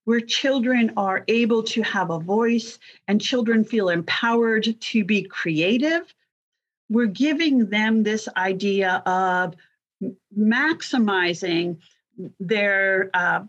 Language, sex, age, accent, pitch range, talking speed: English, female, 50-69, American, 195-245 Hz, 105 wpm